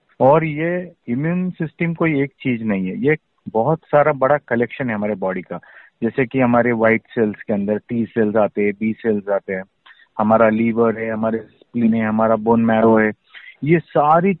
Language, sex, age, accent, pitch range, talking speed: Hindi, male, 40-59, native, 115-155 Hz, 190 wpm